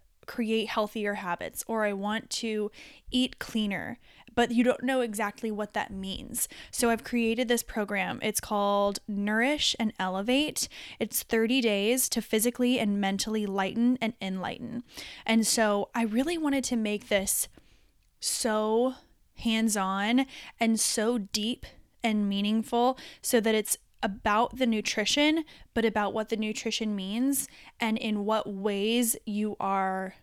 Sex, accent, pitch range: female, American, 210-245 Hz